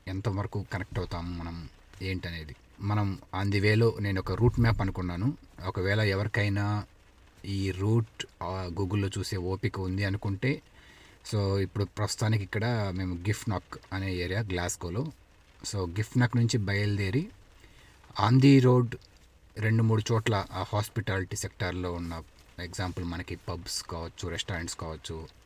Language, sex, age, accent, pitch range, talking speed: Telugu, male, 30-49, native, 90-110 Hz, 115 wpm